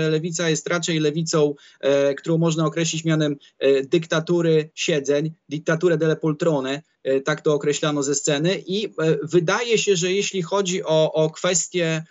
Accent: native